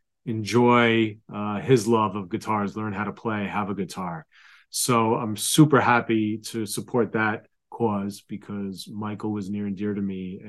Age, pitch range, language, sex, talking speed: 30-49, 100-120 Hz, English, male, 165 wpm